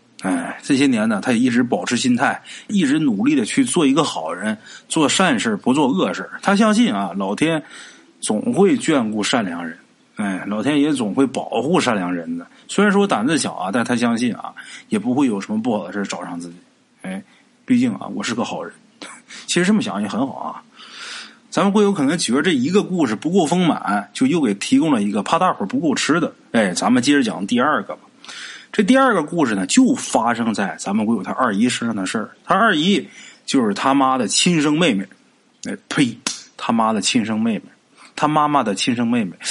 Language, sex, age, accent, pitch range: Chinese, male, 20-39, native, 180-255 Hz